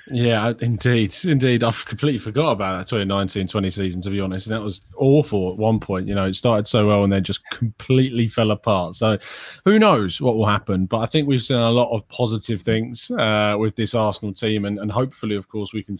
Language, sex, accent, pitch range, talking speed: English, male, British, 105-145 Hz, 225 wpm